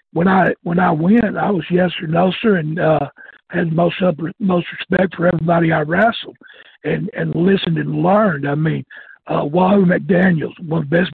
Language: English